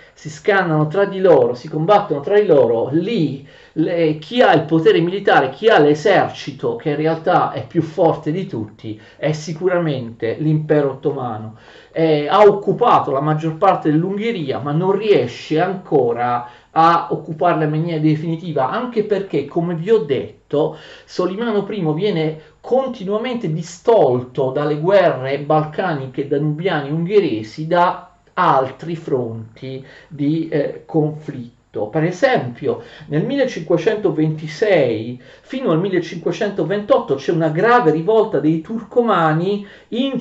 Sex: male